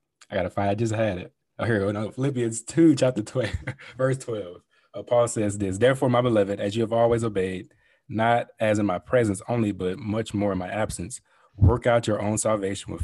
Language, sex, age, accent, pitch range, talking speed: English, male, 20-39, American, 100-120 Hz, 215 wpm